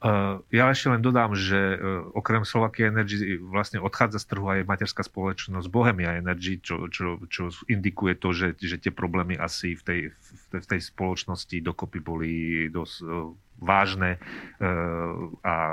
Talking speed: 150 wpm